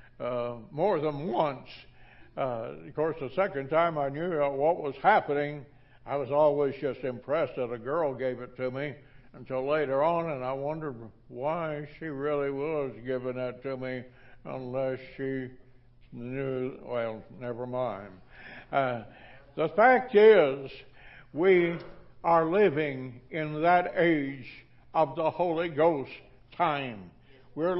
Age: 60-79